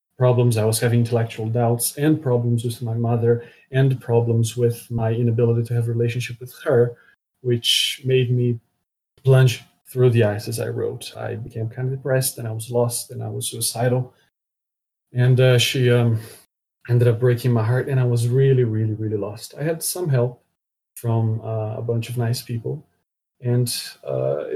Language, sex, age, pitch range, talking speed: English, male, 30-49, 115-125 Hz, 180 wpm